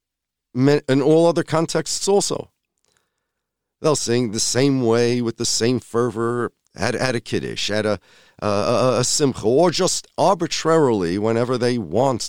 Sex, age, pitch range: male, 50-69, 90-125 Hz